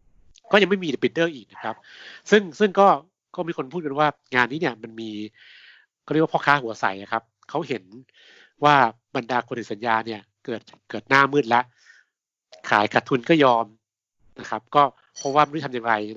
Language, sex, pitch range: Thai, male, 110-145 Hz